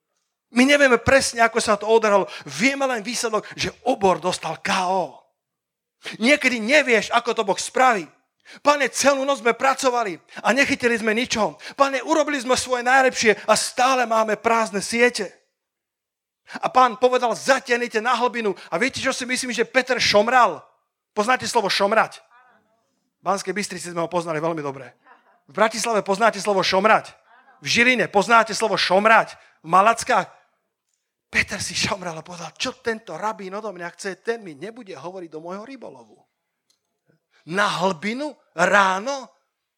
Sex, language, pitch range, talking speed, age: male, Slovak, 190-255 Hz, 145 wpm, 40-59